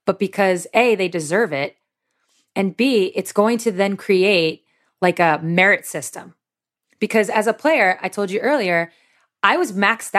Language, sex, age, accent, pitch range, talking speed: English, female, 20-39, American, 170-215 Hz, 165 wpm